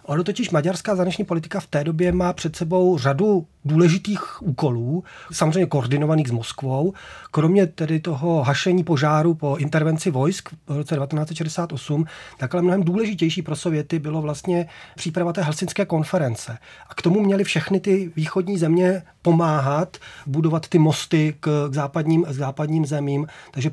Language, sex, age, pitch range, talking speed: Czech, male, 30-49, 145-175 Hz, 150 wpm